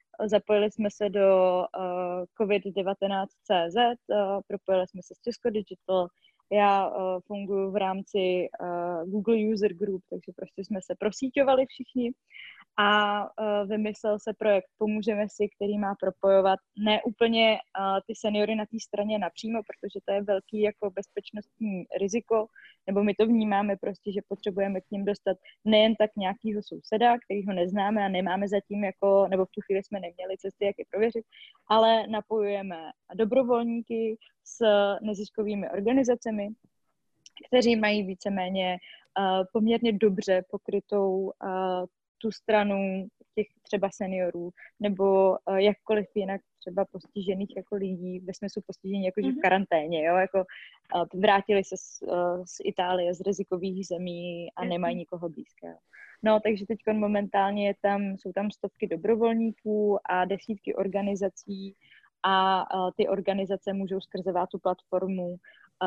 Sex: female